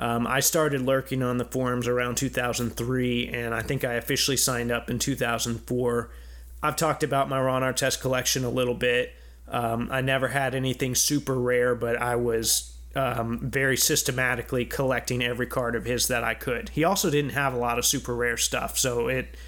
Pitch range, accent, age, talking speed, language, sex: 120-135 Hz, American, 30-49, 190 wpm, English, male